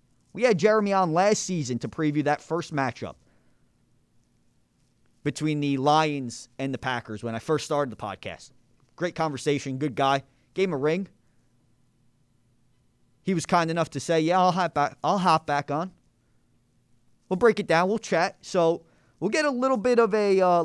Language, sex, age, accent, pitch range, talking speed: English, male, 30-49, American, 125-170 Hz, 170 wpm